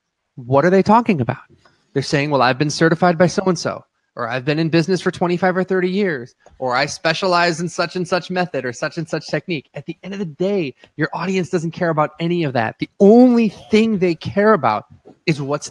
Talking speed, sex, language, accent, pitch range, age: 220 wpm, male, English, American, 135-185 Hz, 20-39